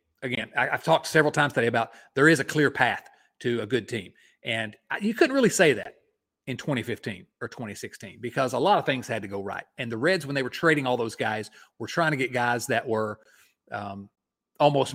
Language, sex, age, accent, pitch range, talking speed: English, male, 40-59, American, 115-165 Hz, 215 wpm